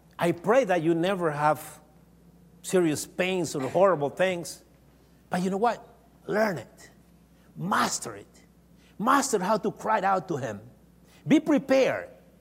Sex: male